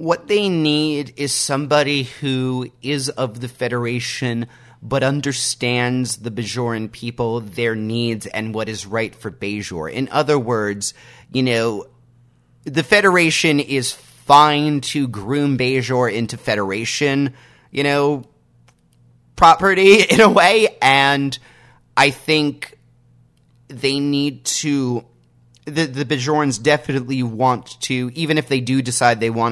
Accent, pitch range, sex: American, 110-140 Hz, male